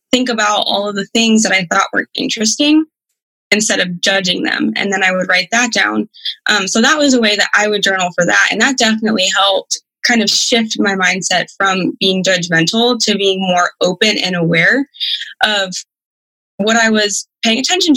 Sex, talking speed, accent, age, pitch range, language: female, 195 wpm, American, 20-39, 190-230 Hz, English